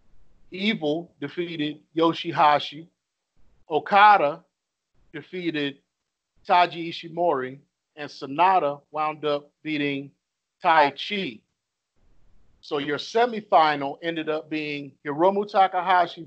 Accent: American